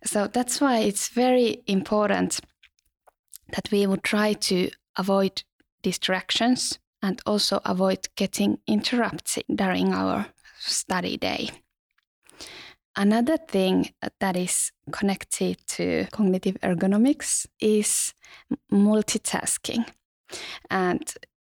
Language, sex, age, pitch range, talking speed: Finnish, female, 20-39, 185-215 Hz, 90 wpm